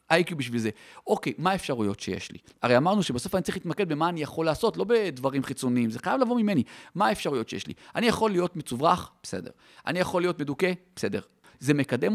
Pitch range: 130-200 Hz